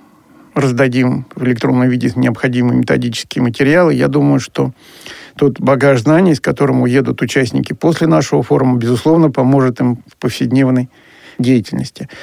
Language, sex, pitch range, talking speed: Russian, male, 125-145 Hz, 130 wpm